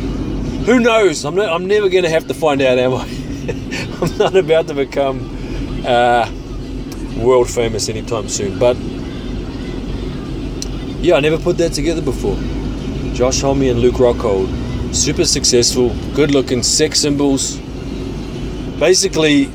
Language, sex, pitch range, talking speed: English, male, 120-140 Hz, 135 wpm